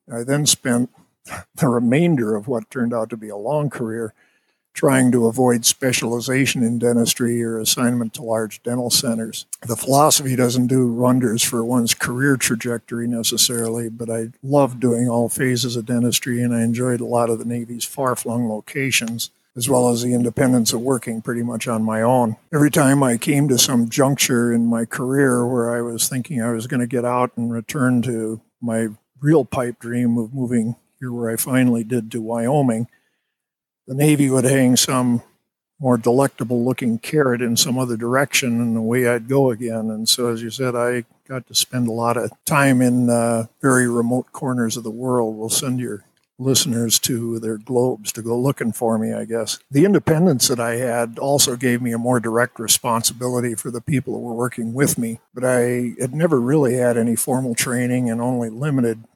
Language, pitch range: English, 115-130 Hz